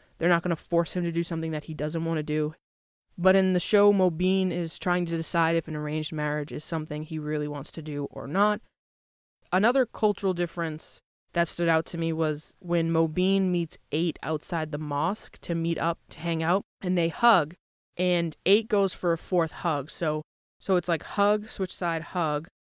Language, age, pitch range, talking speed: English, 20-39, 160-185 Hz, 205 wpm